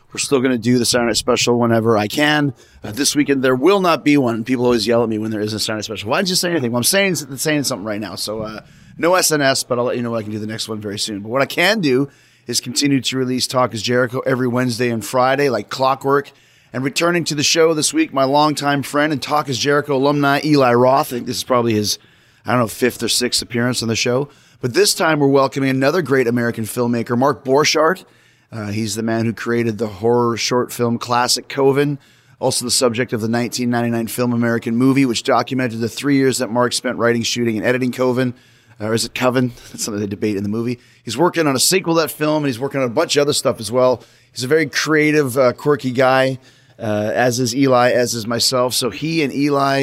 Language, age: English, 30-49